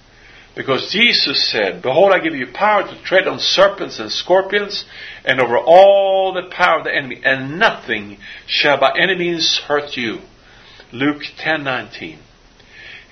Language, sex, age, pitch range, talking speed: English, male, 50-69, 145-195 Hz, 145 wpm